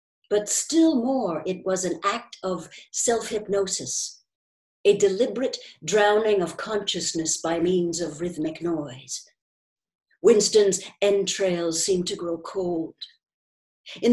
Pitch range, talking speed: 170-240 Hz, 110 wpm